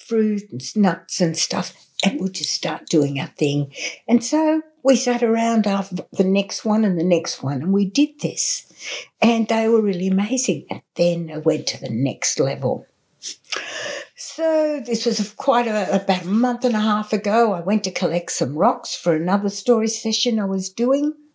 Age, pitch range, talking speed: 60-79, 185-230 Hz, 185 wpm